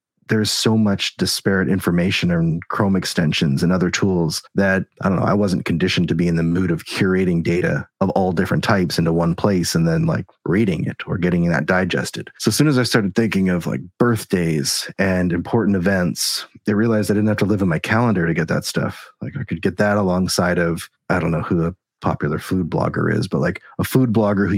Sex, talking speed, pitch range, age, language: male, 220 wpm, 90-110 Hz, 30-49, English